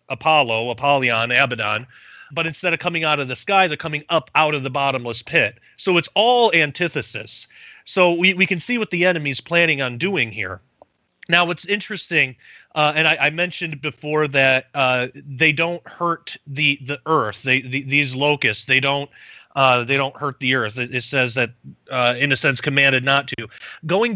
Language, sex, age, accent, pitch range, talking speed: English, male, 30-49, American, 130-160 Hz, 185 wpm